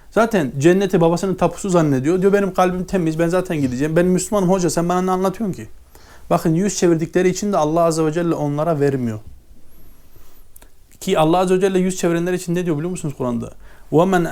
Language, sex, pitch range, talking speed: Turkish, male, 135-180 Hz, 190 wpm